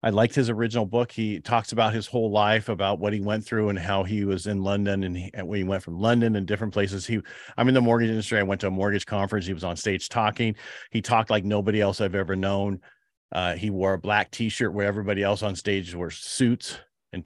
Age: 40-59